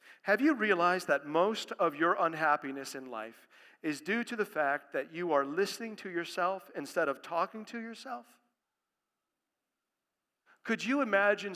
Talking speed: 150 wpm